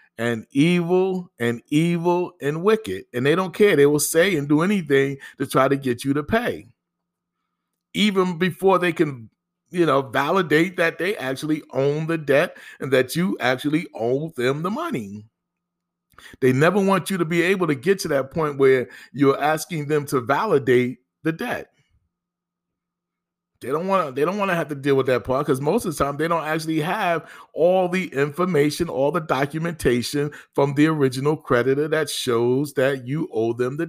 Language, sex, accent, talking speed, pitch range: English, male, American, 185 wpm, 135-175 Hz